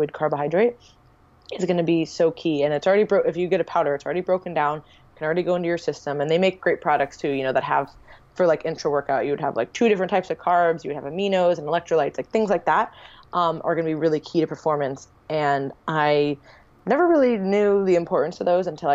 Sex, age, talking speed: female, 20-39, 245 wpm